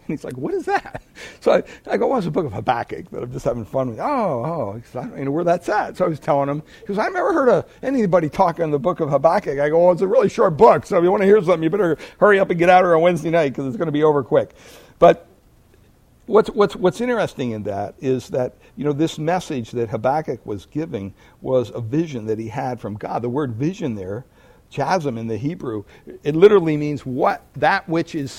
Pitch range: 120-175 Hz